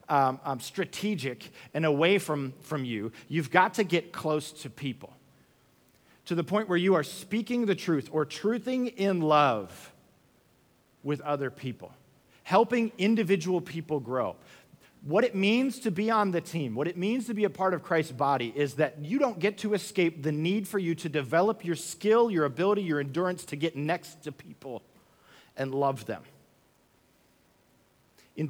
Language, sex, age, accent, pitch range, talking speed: English, male, 40-59, American, 155-210 Hz, 170 wpm